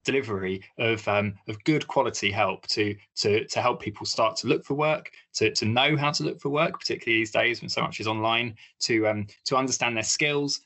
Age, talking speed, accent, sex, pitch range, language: 20-39, 220 wpm, British, male, 110-140 Hz, English